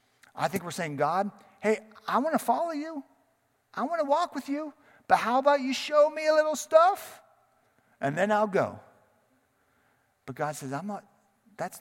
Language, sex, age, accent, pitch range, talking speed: English, male, 40-59, American, 115-190 Hz, 175 wpm